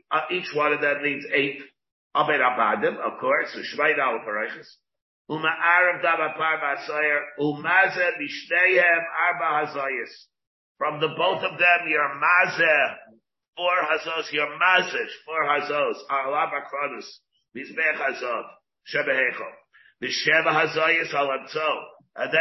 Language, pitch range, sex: English, 145-180 Hz, male